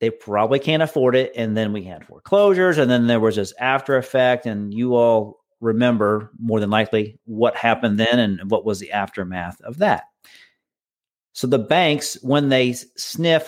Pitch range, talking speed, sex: 115-145 Hz, 180 wpm, male